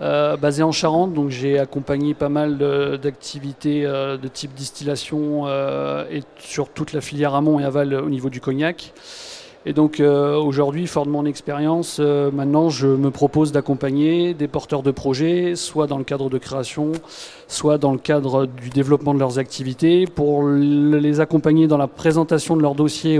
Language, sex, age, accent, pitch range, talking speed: French, male, 40-59, French, 140-155 Hz, 180 wpm